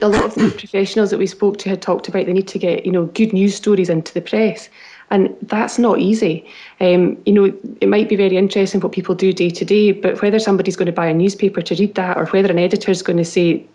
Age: 20-39